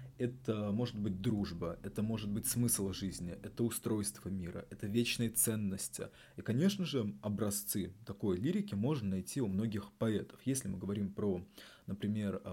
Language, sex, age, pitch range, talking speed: Russian, male, 20-39, 95-110 Hz, 150 wpm